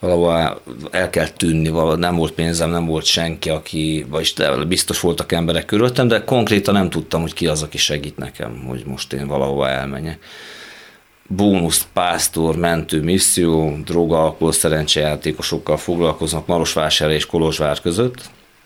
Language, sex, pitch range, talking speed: Hungarian, male, 80-95 Hz, 135 wpm